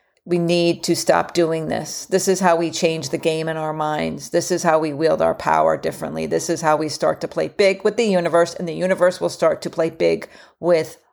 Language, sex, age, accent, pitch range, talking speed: English, female, 40-59, American, 170-220 Hz, 235 wpm